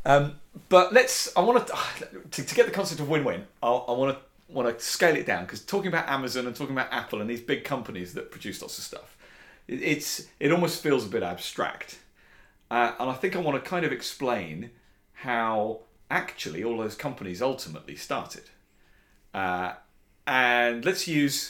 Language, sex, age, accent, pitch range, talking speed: English, male, 40-59, British, 110-165 Hz, 175 wpm